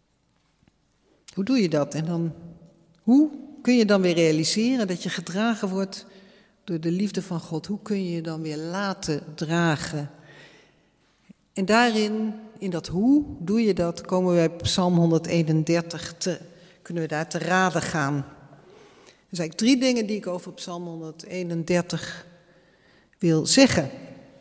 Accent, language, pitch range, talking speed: Dutch, Dutch, 170-220 Hz, 145 wpm